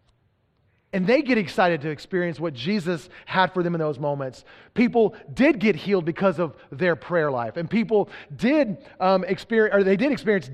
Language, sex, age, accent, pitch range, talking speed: English, male, 30-49, American, 135-200 Hz, 180 wpm